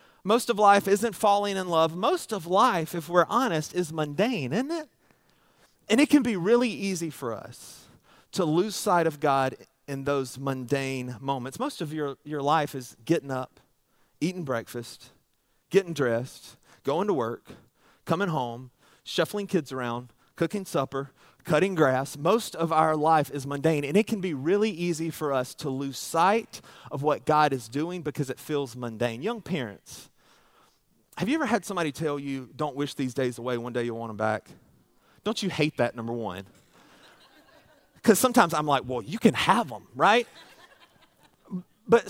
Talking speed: 170 wpm